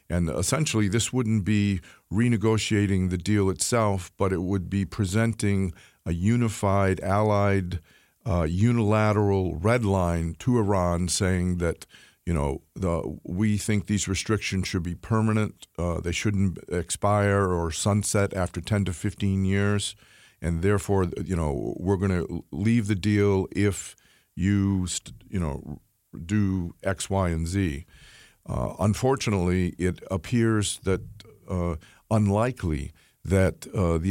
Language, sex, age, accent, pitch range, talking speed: English, male, 50-69, American, 85-105 Hz, 130 wpm